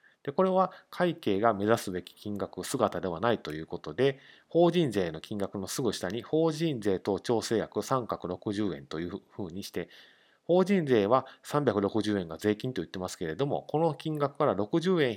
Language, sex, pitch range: Japanese, male, 95-140 Hz